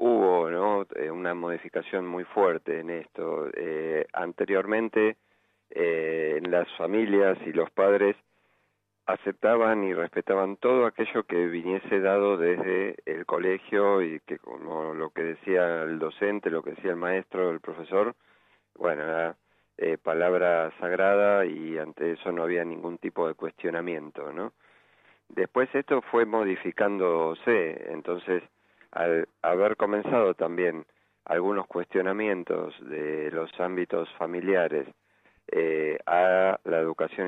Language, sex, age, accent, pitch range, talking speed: Spanish, male, 40-59, Argentinian, 85-100 Hz, 120 wpm